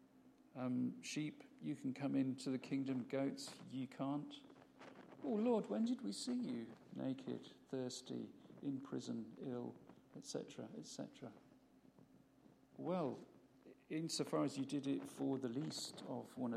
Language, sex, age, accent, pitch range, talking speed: English, male, 50-69, British, 120-170 Hz, 130 wpm